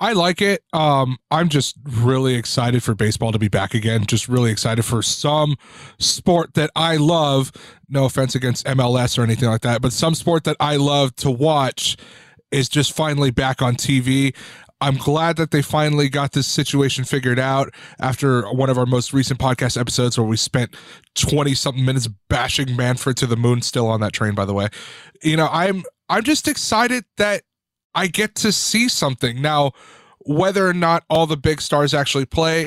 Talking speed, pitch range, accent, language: 190 wpm, 125-155 Hz, American, English